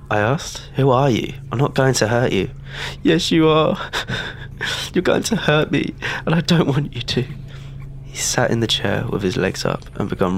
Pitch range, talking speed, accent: 105-150 Hz, 210 wpm, British